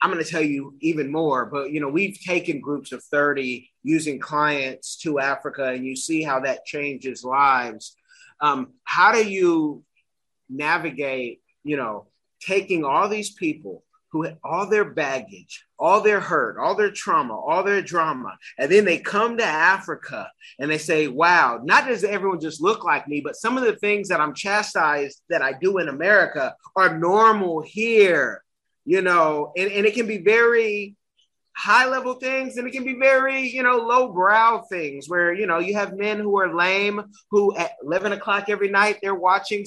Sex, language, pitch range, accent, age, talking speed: male, English, 160-215 Hz, American, 30-49, 185 wpm